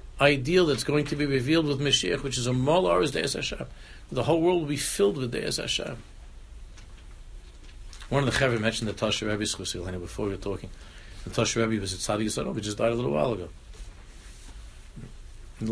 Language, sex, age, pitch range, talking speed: English, male, 60-79, 90-115 Hz, 190 wpm